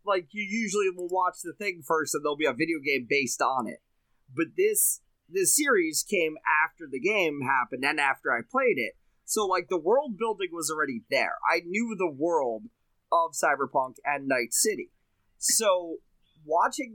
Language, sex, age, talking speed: English, male, 30-49, 175 wpm